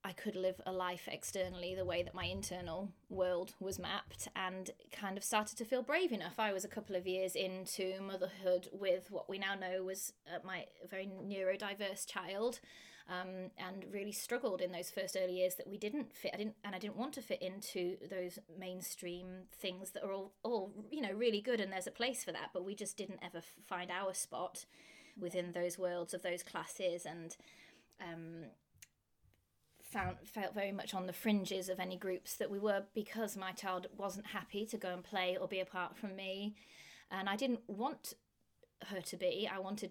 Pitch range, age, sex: 185-205 Hz, 20-39, female